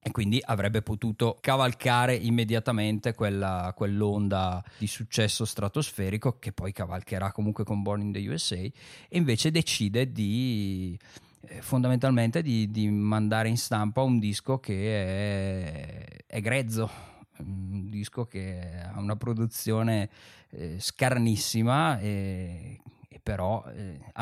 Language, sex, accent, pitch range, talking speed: Italian, male, native, 100-125 Hz, 125 wpm